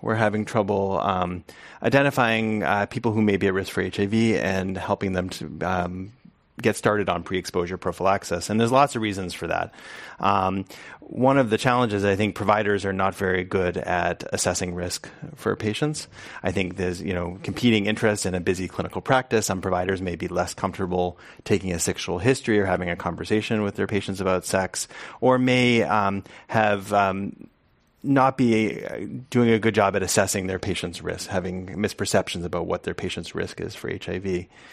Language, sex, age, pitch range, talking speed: English, male, 30-49, 90-110 Hz, 180 wpm